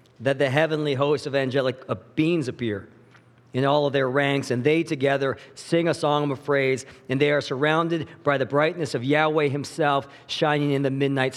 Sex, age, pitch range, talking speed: male, 40-59, 135-160 Hz, 185 wpm